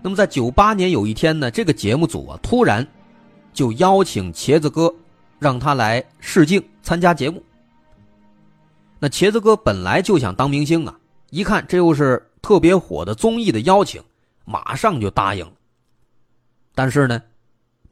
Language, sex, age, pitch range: Chinese, male, 30-49, 110-170 Hz